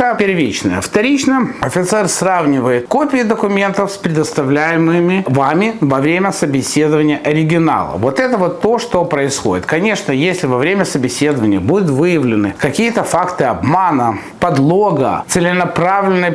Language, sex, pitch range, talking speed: Russian, male, 150-210 Hz, 115 wpm